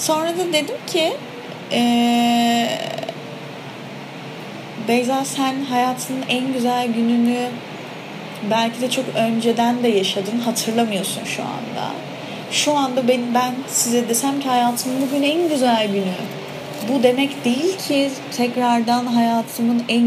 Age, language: 30-49, Turkish